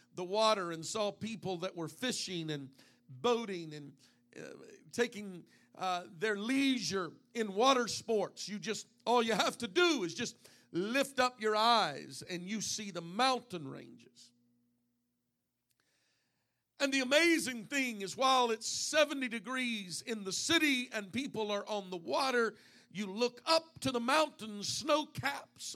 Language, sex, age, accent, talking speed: English, male, 50-69, American, 150 wpm